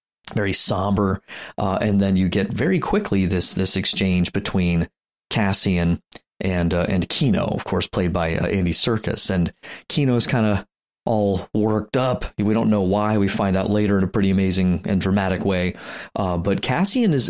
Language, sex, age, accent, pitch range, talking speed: English, male, 30-49, American, 90-105 Hz, 180 wpm